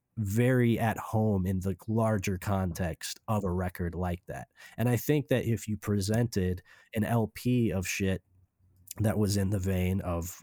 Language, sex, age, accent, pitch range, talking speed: English, male, 20-39, American, 95-110 Hz, 165 wpm